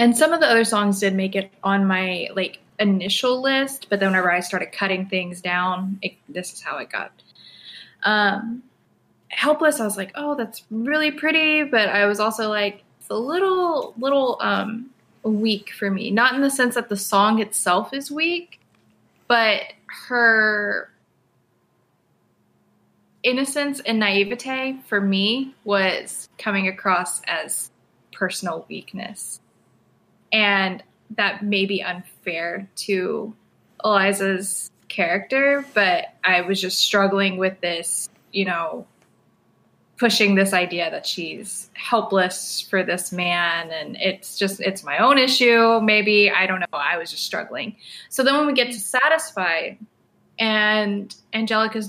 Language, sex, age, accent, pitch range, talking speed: English, female, 20-39, American, 190-235 Hz, 140 wpm